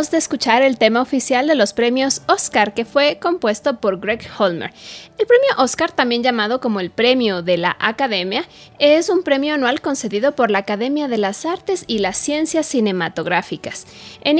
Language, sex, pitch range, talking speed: Spanish, female, 220-295 Hz, 175 wpm